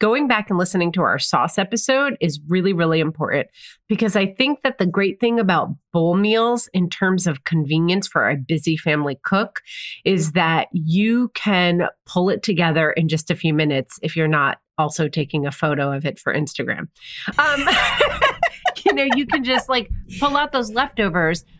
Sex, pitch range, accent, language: female, 155-210 Hz, American, English